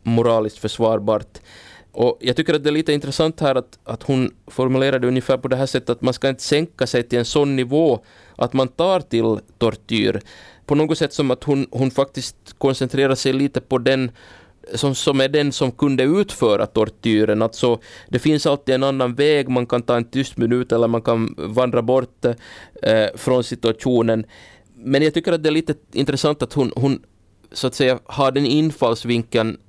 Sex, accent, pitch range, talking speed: male, Finnish, 115-140 Hz, 185 wpm